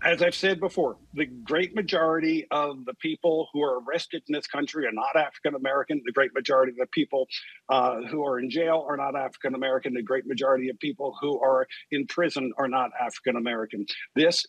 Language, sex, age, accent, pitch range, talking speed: English, male, 50-69, American, 145-185 Hz, 190 wpm